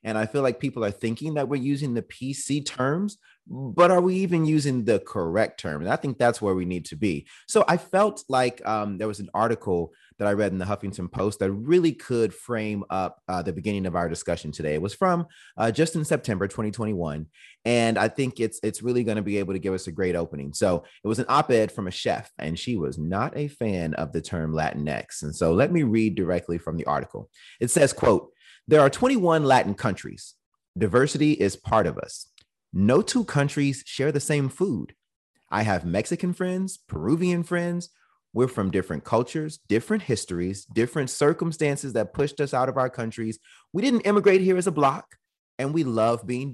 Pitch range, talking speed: 95-150 Hz, 210 wpm